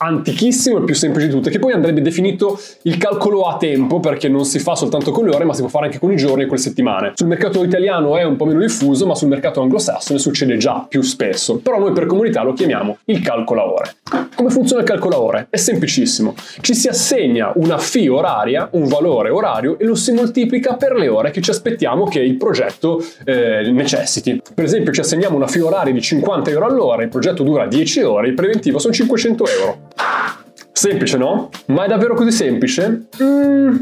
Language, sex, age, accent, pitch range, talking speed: Italian, male, 20-39, native, 150-240 Hz, 215 wpm